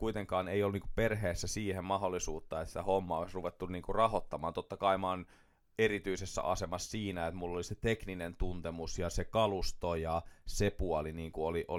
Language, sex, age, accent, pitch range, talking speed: Finnish, male, 30-49, native, 85-100 Hz, 150 wpm